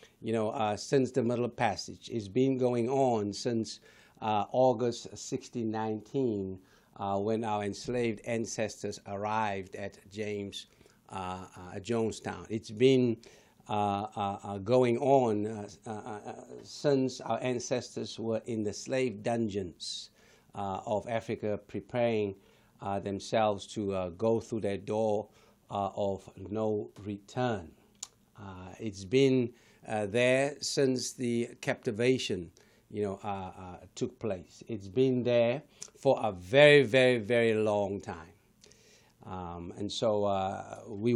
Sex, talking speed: male, 130 wpm